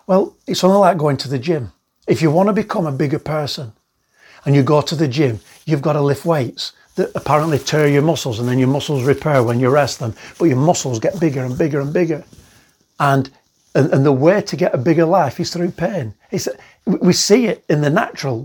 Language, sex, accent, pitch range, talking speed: English, male, British, 130-170 Hz, 230 wpm